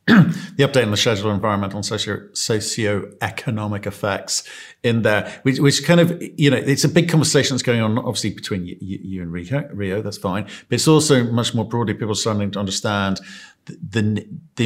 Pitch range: 100-120 Hz